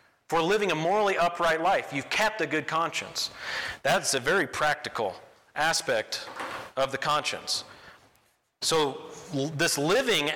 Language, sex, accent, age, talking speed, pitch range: English, male, American, 40-59, 135 wpm, 155-220 Hz